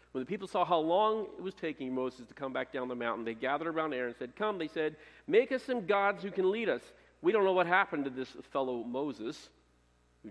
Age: 50-69